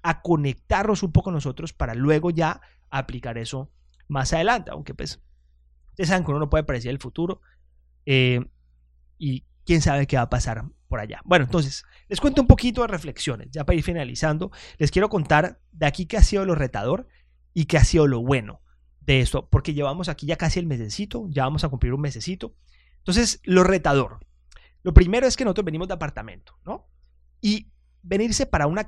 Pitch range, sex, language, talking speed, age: 110-175 Hz, male, Spanish, 190 wpm, 30-49